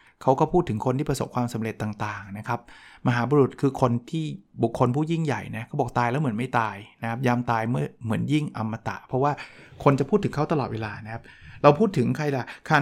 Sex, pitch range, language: male, 115-140 Hz, Thai